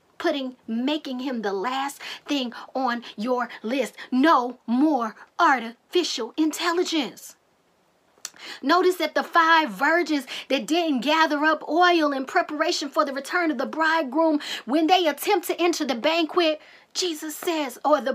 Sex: female